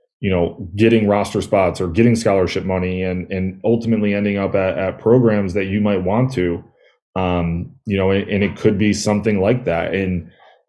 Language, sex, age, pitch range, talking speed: English, male, 30-49, 95-110 Hz, 190 wpm